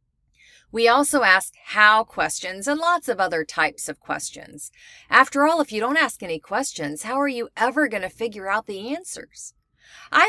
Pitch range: 180-255 Hz